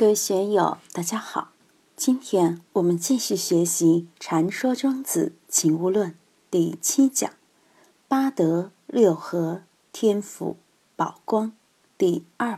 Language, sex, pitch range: Chinese, female, 170-250 Hz